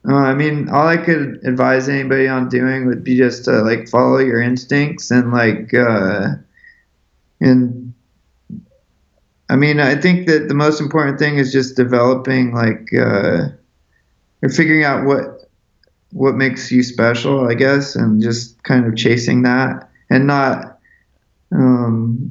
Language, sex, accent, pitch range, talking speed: English, male, American, 120-145 Hz, 150 wpm